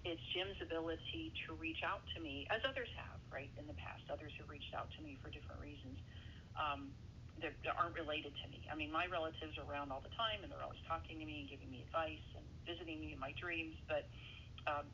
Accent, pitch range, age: American, 100-140 Hz, 40-59